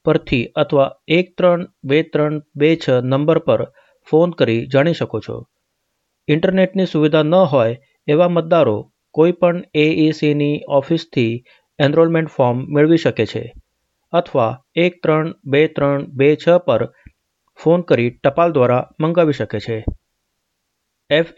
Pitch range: 135-165 Hz